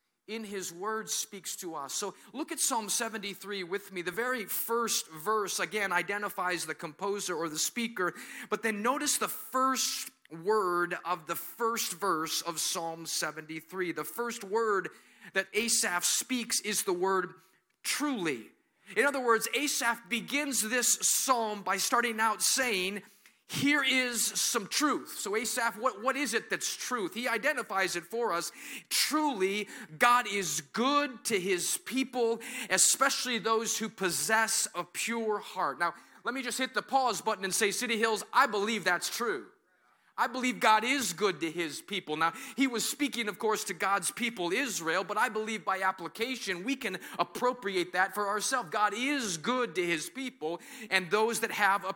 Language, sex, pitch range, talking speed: English, male, 190-250 Hz, 165 wpm